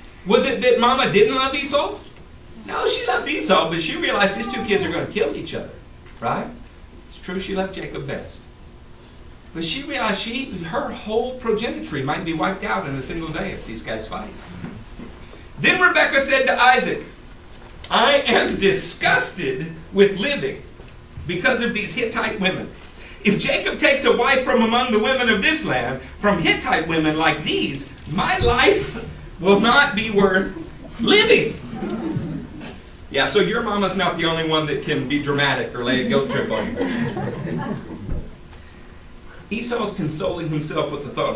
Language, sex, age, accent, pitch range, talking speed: English, male, 60-79, American, 155-235 Hz, 165 wpm